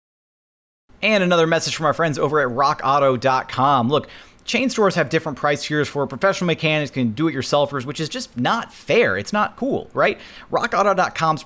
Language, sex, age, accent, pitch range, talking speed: English, male, 30-49, American, 125-165 Hz, 160 wpm